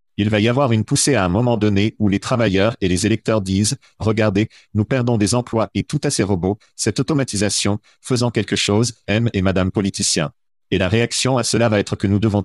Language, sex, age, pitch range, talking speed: French, male, 50-69, 100-120 Hz, 220 wpm